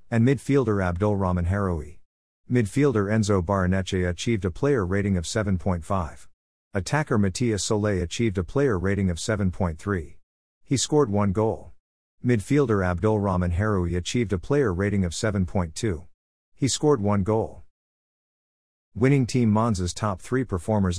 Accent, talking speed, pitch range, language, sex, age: American, 130 wpm, 90-115 Hz, English, male, 50-69